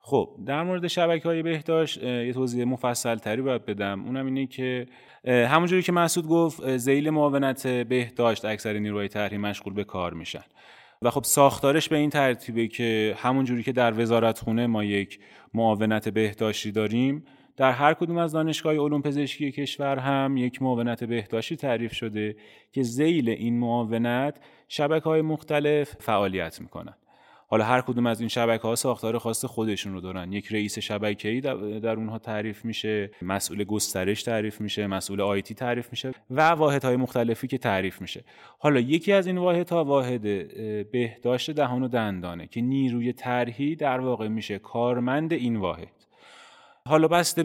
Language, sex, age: Persian, male, 30-49